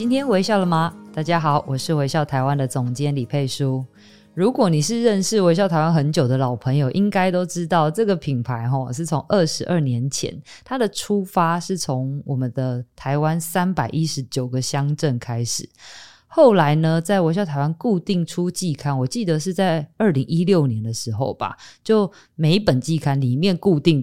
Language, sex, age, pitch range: Chinese, female, 20-39, 135-185 Hz